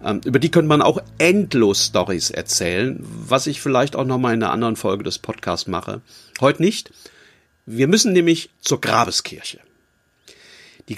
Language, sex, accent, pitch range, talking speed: German, male, German, 130-195 Hz, 155 wpm